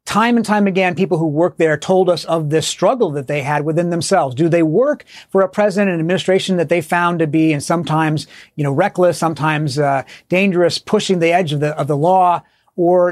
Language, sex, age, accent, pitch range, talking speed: English, male, 40-59, American, 155-180 Hz, 220 wpm